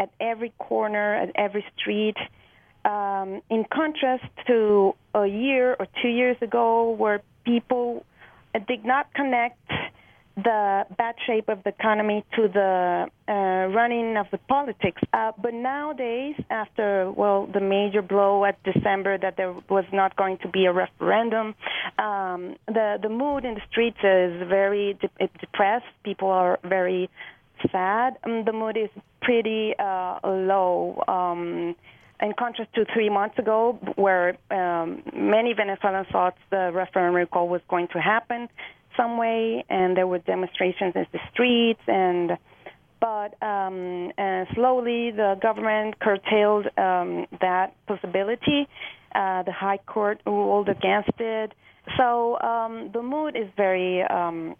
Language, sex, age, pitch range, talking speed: English, female, 30-49, 185-230 Hz, 140 wpm